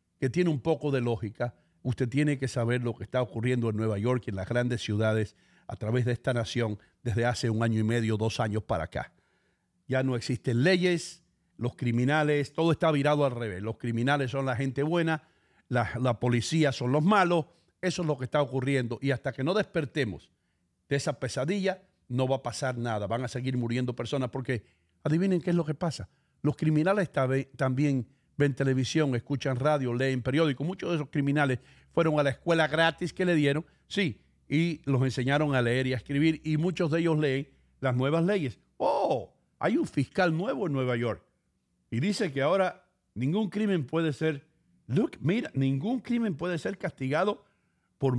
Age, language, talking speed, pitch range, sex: 50-69, English, 190 wpm, 125-165 Hz, male